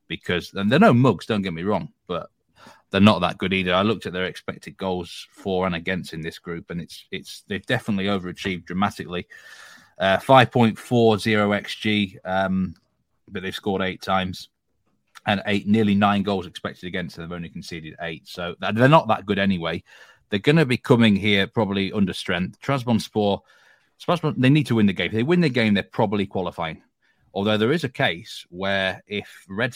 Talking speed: 190 wpm